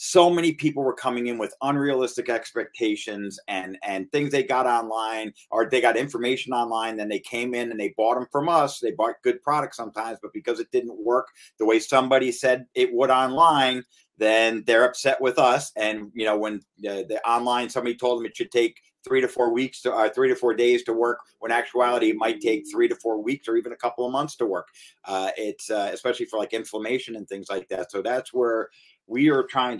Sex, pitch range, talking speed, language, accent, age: male, 110-135 Hz, 225 wpm, English, American, 50-69